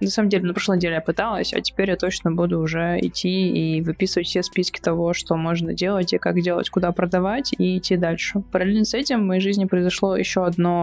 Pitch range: 165-195 Hz